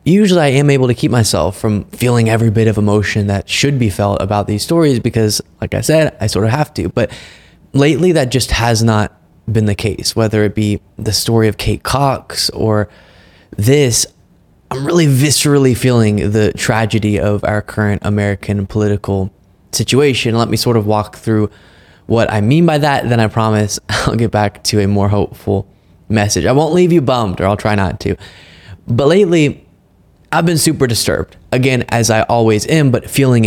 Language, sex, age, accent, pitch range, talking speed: English, male, 20-39, American, 105-130 Hz, 190 wpm